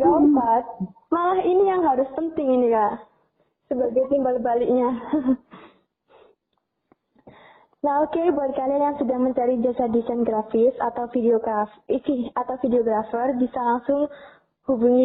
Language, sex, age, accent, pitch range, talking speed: Indonesian, female, 20-39, native, 240-280 Hz, 120 wpm